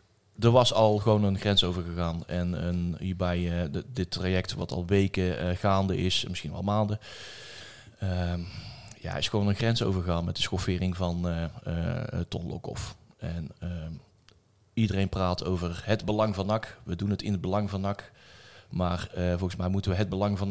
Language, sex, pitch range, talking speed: Dutch, male, 90-105 Hz, 180 wpm